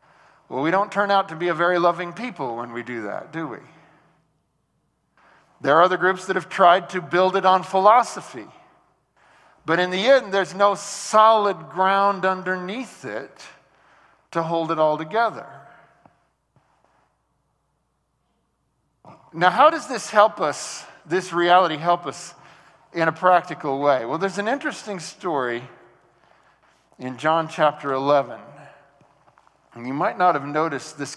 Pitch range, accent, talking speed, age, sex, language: 150-195 Hz, American, 140 wpm, 50-69, male, English